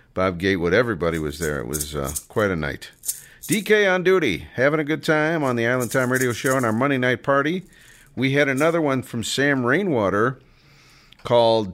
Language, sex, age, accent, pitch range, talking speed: English, male, 50-69, American, 95-130 Hz, 190 wpm